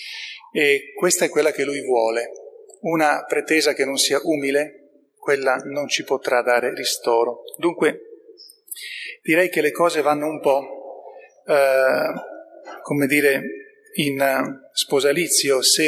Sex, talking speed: male, 125 wpm